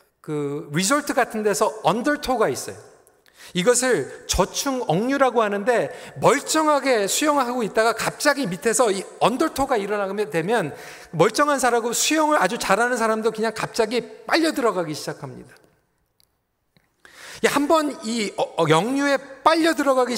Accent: native